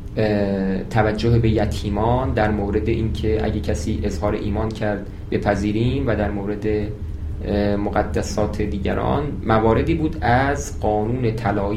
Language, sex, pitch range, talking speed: Persian, male, 105-135 Hz, 115 wpm